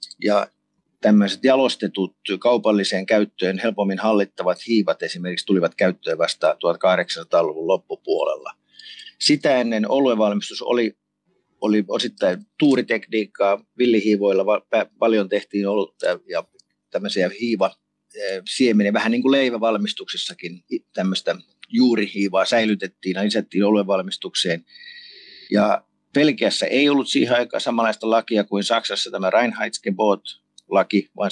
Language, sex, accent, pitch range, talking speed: Finnish, male, native, 100-135 Hz, 100 wpm